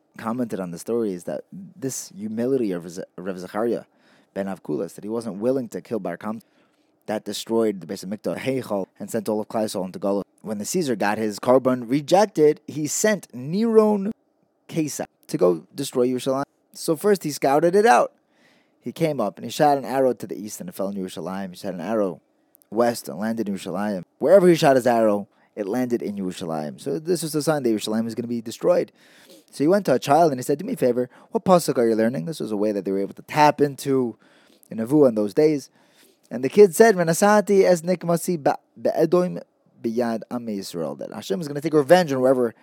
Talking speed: 220 wpm